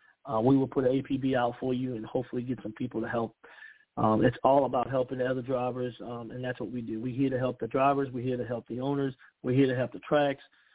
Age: 40-59